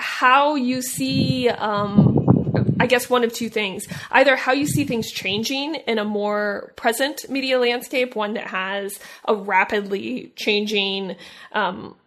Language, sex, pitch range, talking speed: English, female, 195-235 Hz, 145 wpm